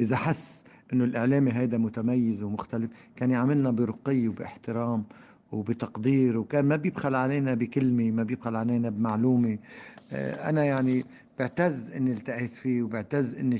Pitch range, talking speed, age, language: 115-130 Hz, 130 wpm, 50-69, Arabic